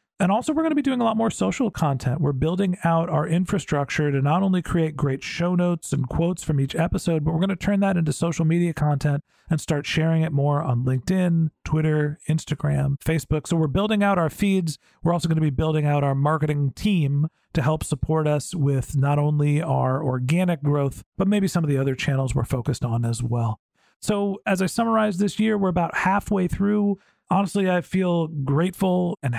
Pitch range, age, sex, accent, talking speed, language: 145-175 Hz, 40-59, male, American, 210 wpm, English